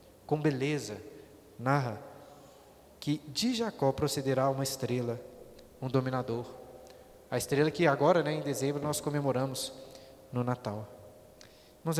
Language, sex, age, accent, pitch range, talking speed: Portuguese, male, 20-39, Brazilian, 140-195 Hz, 115 wpm